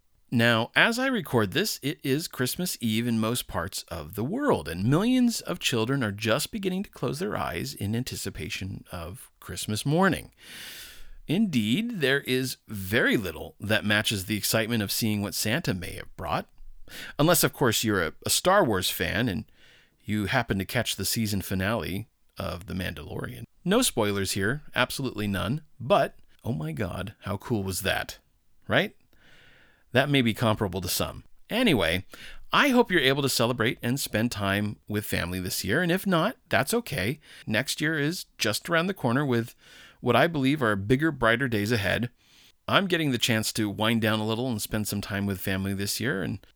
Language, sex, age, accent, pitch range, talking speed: English, male, 40-59, American, 100-140 Hz, 180 wpm